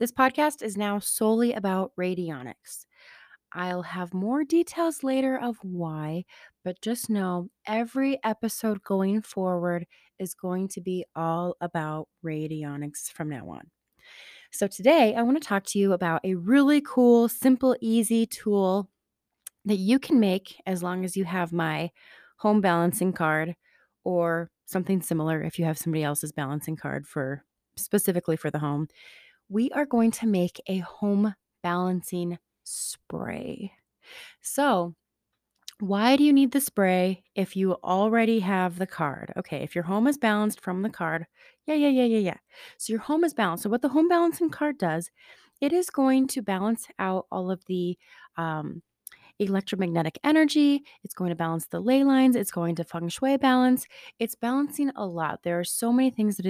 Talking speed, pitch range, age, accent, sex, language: 165 wpm, 175-245 Hz, 20-39, American, female, English